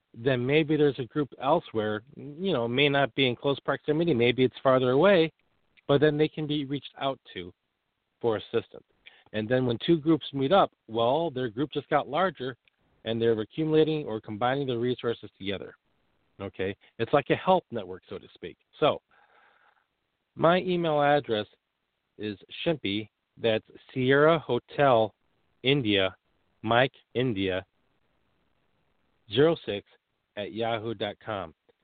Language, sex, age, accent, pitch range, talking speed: English, male, 40-59, American, 115-150 Hz, 140 wpm